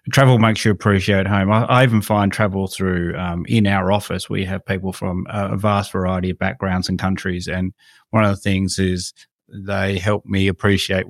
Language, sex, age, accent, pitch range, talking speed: English, male, 30-49, Australian, 100-125 Hz, 195 wpm